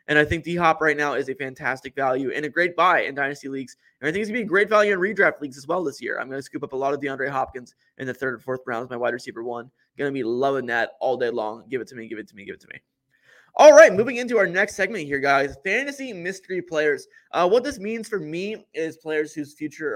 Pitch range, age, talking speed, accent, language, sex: 135-180 Hz, 20-39, 290 wpm, American, English, male